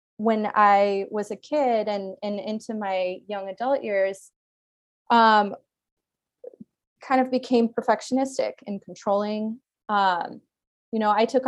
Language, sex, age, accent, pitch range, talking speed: English, female, 20-39, American, 185-215 Hz, 125 wpm